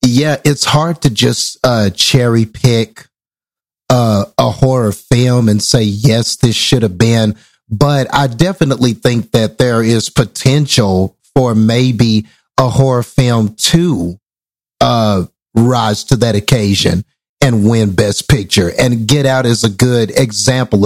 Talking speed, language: 140 wpm, English